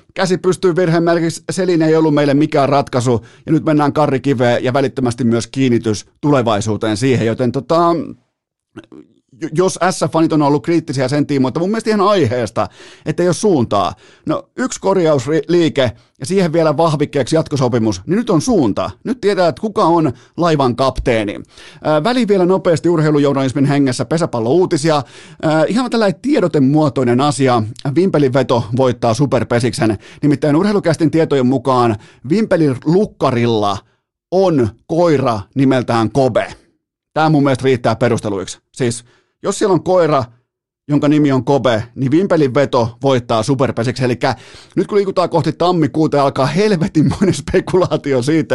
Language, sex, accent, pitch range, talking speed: Finnish, male, native, 125-165 Hz, 135 wpm